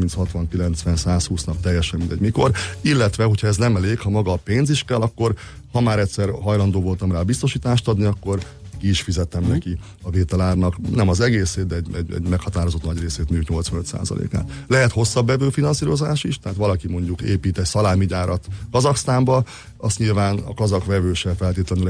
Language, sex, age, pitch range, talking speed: Hungarian, male, 30-49, 90-115 Hz, 160 wpm